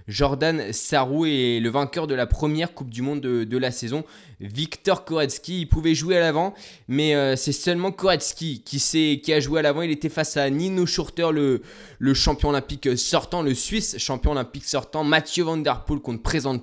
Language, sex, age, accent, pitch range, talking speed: French, male, 20-39, French, 125-160 Hz, 200 wpm